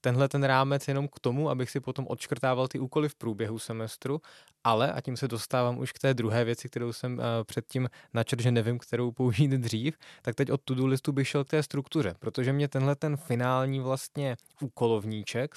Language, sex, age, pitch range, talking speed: Czech, male, 20-39, 115-140 Hz, 205 wpm